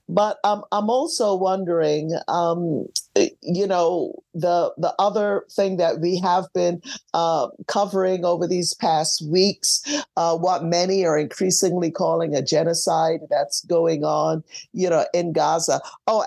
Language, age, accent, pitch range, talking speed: English, 50-69, American, 170-215 Hz, 140 wpm